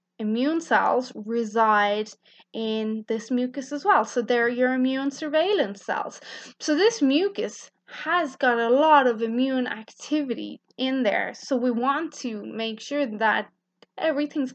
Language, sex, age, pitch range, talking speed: English, female, 20-39, 215-265 Hz, 140 wpm